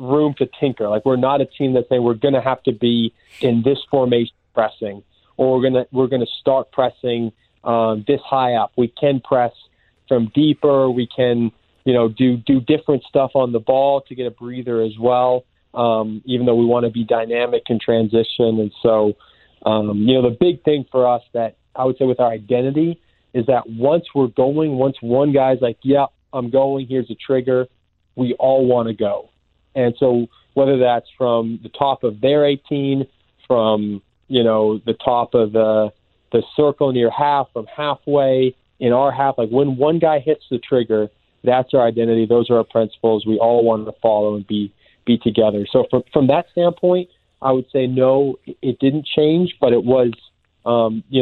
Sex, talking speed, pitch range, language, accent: male, 200 wpm, 115-135 Hz, English, American